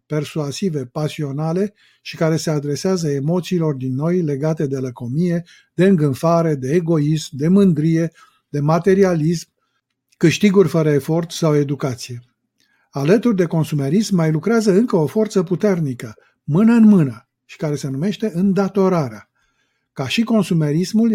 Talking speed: 130 wpm